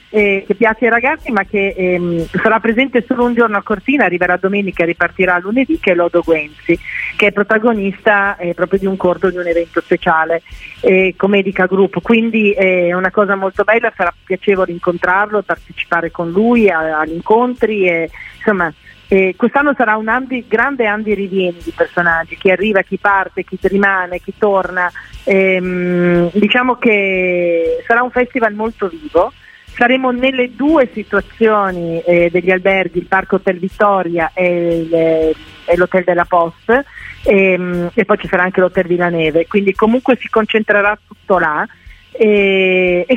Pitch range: 180-220 Hz